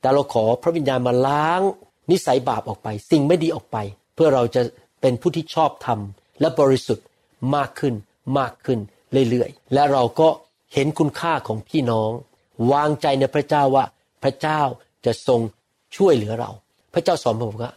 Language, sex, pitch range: Thai, male, 120-155 Hz